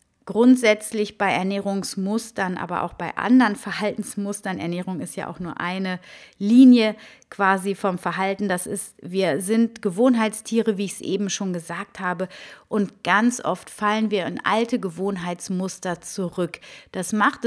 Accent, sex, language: German, female, German